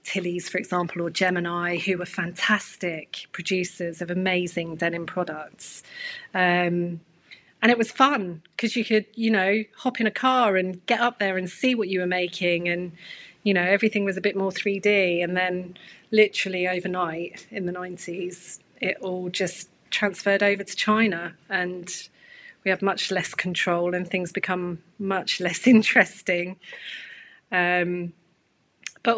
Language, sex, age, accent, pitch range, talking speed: English, female, 30-49, British, 175-205 Hz, 150 wpm